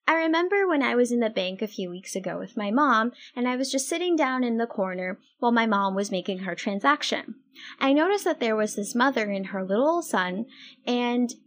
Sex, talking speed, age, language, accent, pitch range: female, 225 wpm, 10-29, English, American, 205-275 Hz